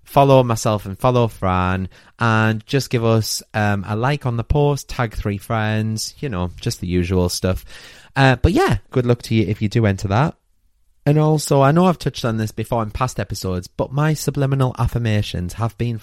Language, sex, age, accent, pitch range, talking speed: English, male, 30-49, British, 100-130 Hz, 200 wpm